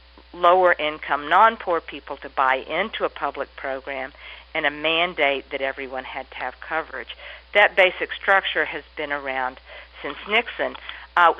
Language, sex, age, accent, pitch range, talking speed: English, female, 50-69, American, 140-185 Hz, 140 wpm